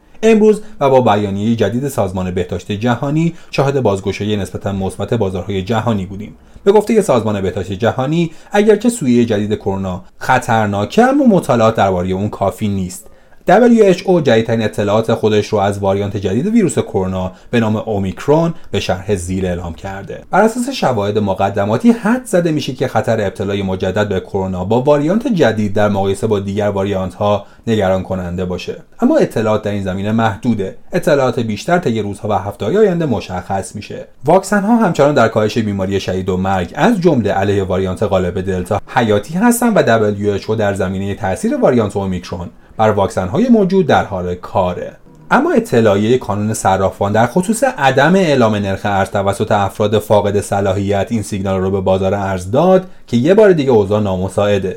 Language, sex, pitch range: Persian, male, 95-140 Hz